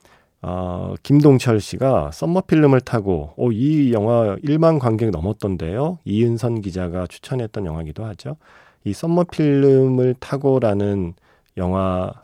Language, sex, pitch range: Korean, male, 90-130 Hz